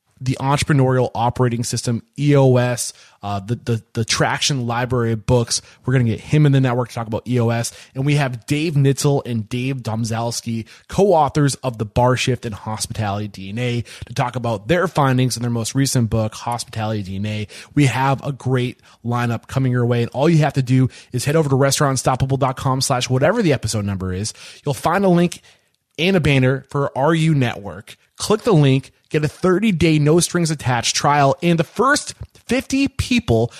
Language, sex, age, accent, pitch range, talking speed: English, male, 20-39, American, 115-150 Hz, 180 wpm